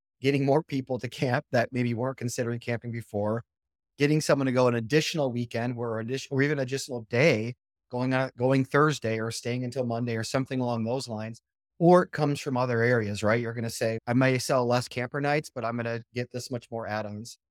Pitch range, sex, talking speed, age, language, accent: 115-130 Hz, male, 215 wpm, 30-49, English, American